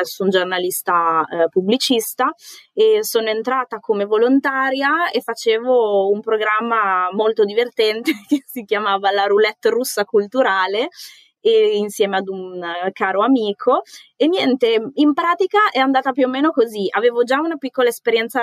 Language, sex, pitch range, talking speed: Italian, female, 190-250 Hz, 140 wpm